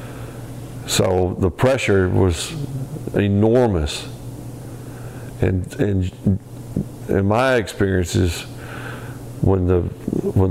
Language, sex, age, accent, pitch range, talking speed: English, male, 50-69, American, 90-120 Hz, 75 wpm